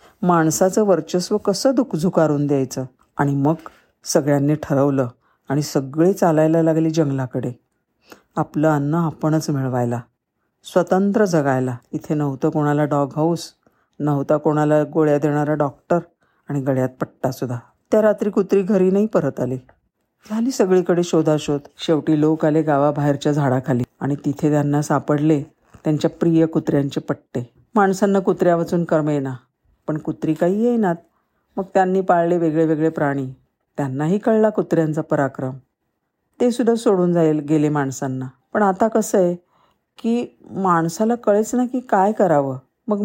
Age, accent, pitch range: 50-69, native, 145-180 Hz